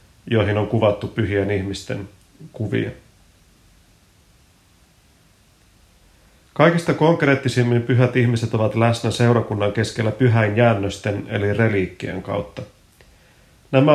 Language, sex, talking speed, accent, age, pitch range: Finnish, male, 85 wpm, native, 30-49, 100-125 Hz